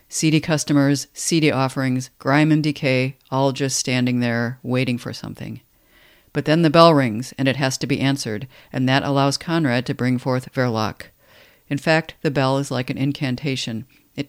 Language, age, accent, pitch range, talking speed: English, 50-69, American, 125-150 Hz, 175 wpm